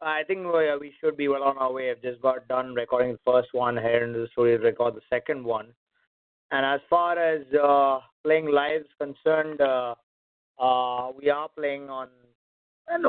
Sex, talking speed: male, 190 wpm